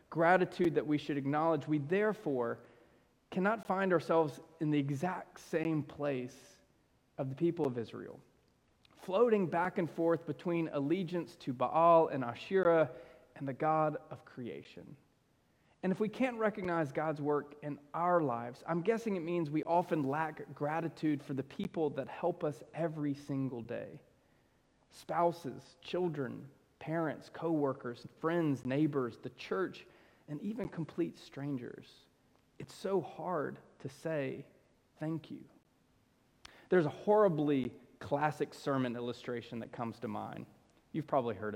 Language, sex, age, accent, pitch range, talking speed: English, male, 30-49, American, 140-170 Hz, 135 wpm